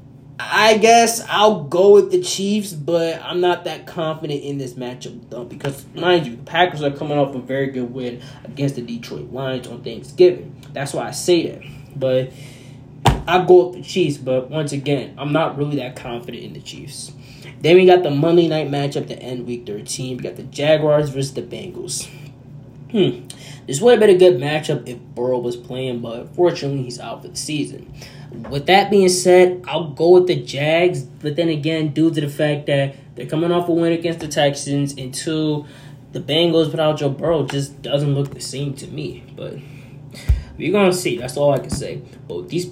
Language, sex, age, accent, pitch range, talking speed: English, male, 20-39, American, 135-170 Hz, 205 wpm